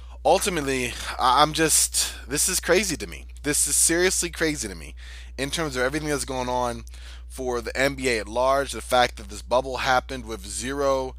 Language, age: English, 20-39